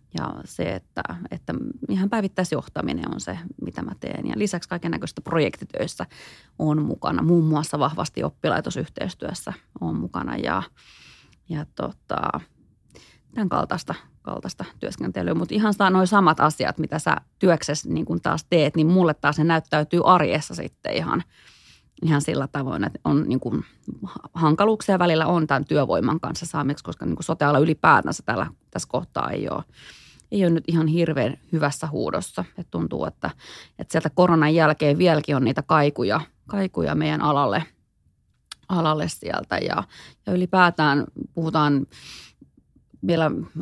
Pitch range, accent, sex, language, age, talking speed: 145-170 Hz, native, female, Finnish, 30-49, 135 wpm